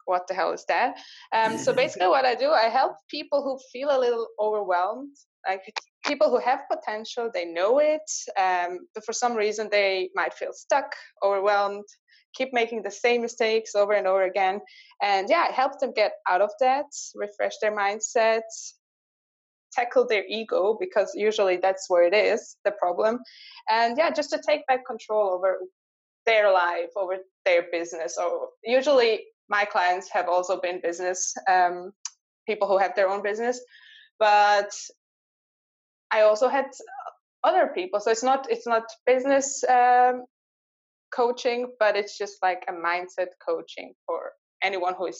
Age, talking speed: 20-39, 160 wpm